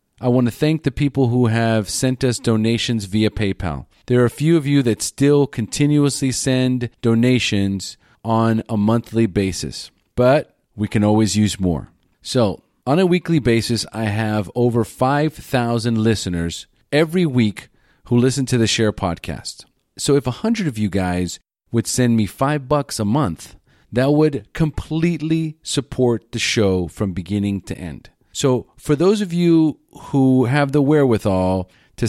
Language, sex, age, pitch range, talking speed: English, male, 40-59, 110-140 Hz, 160 wpm